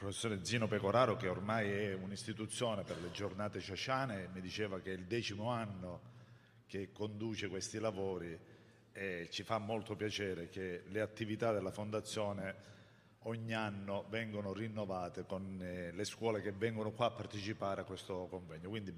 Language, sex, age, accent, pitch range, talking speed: Italian, male, 50-69, native, 95-110 Hz, 160 wpm